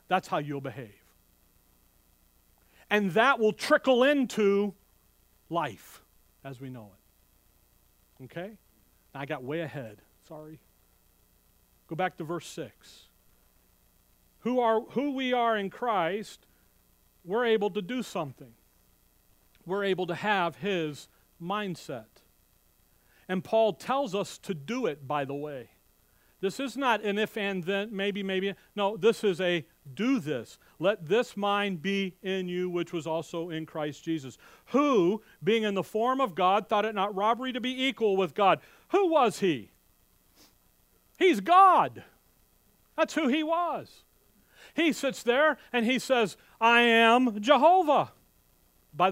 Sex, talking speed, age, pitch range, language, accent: male, 140 wpm, 40-59, 160-240 Hz, English, American